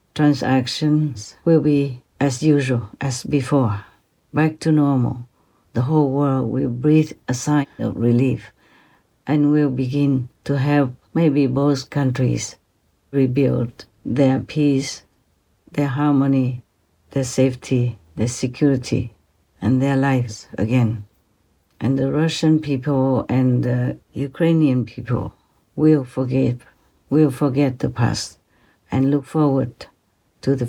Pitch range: 120-140 Hz